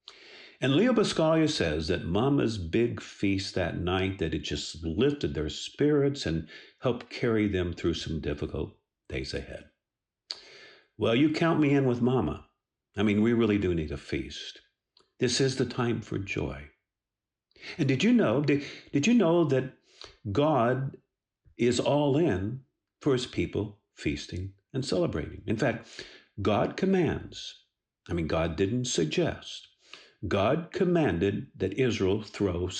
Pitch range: 95-140 Hz